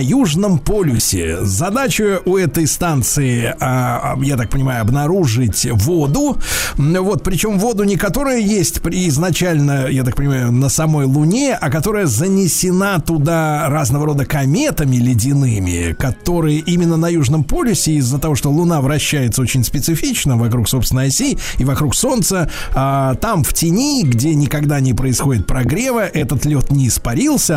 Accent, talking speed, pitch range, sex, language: native, 135 wpm, 135-180 Hz, male, Russian